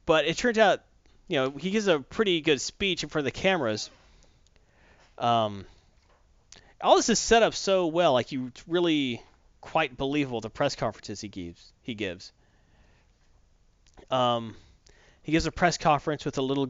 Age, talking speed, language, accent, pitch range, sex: 30-49, 170 wpm, English, American, 105-150 Hz, male